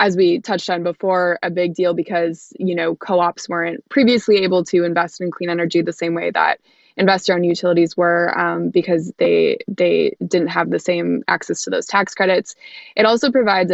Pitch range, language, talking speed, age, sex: 175-205 Hz, English, 190 wpm, 20-39, female